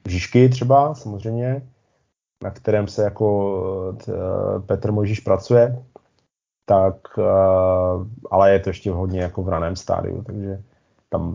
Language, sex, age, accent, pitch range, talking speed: Czech, male, 20-39, native, 95-115 Hz, 130 wpm